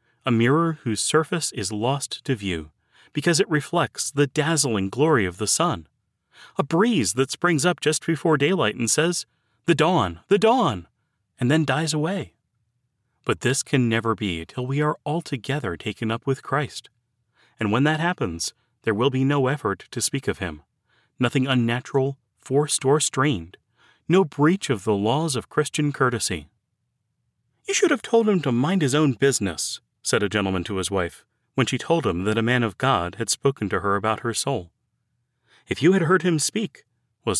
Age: 30-49